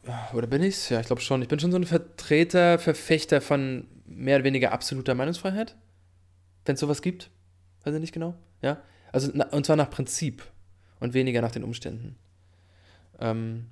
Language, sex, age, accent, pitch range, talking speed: English, male, 20-39, German, 115-145 Hz, 170 wpm